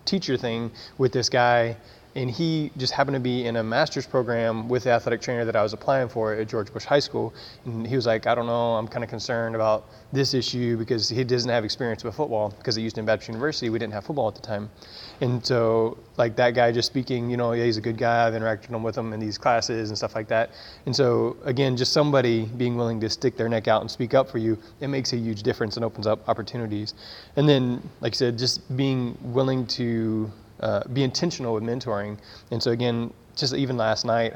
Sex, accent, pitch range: male, American, 110-125 Hz